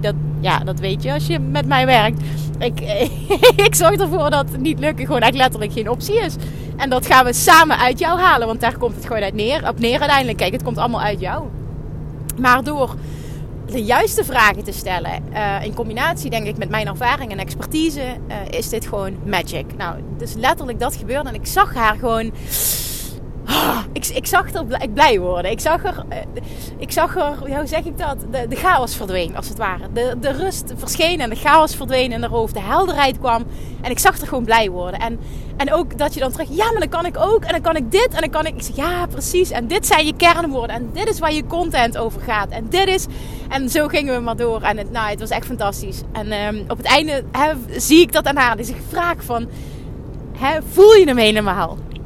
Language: Dutch